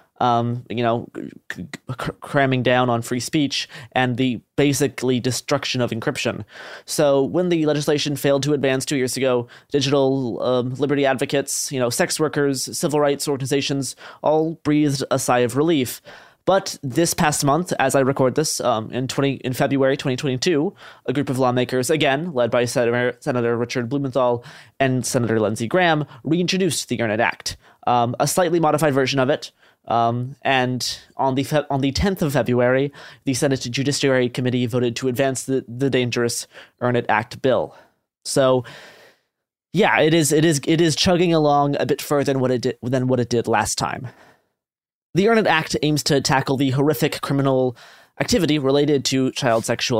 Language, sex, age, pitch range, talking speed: English, male, 20-39, 125-145 Hz, 175 wpm